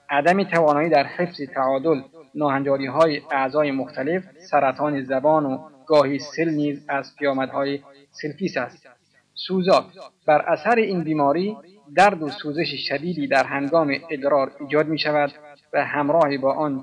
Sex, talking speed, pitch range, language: male, 135 wpm, 140-150 Hz, Persian